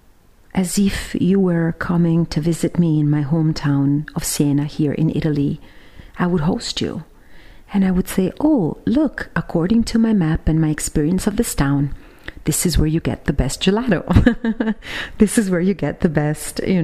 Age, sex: 40-59, female